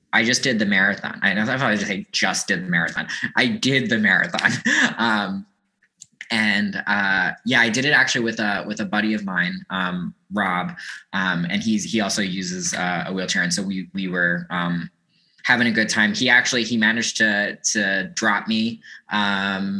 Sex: male